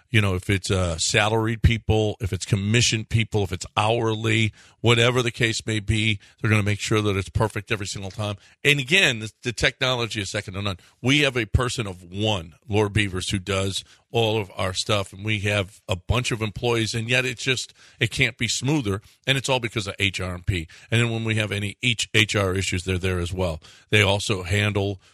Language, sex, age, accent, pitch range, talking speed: English, male, 50-69, American, 100-120 Hz, 215 wpm